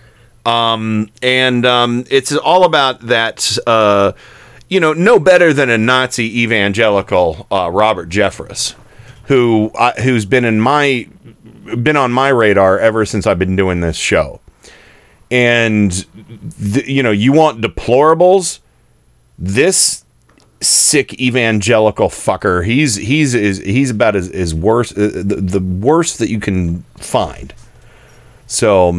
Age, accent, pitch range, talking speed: 40-59, American, 110-140 Hz, 130 wpm